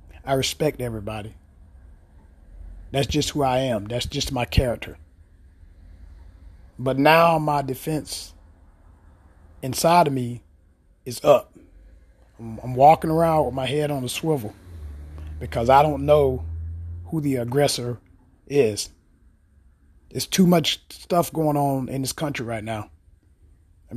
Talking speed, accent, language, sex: 130 wpm, American, English, male